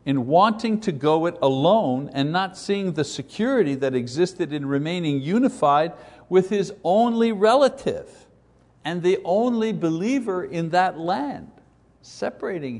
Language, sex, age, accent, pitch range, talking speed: English, male, 60-79, American, 130-190 Hz, 130 wpm